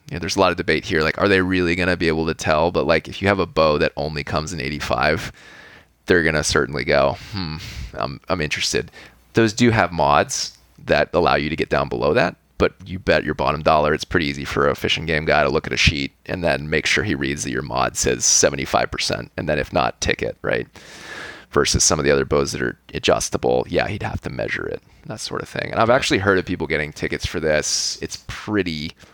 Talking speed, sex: 240 wpm, male